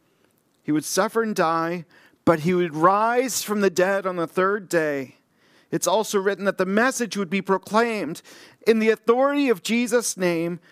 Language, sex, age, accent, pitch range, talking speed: English, male, 40-59, American, 180-225 Hz, 175 wpm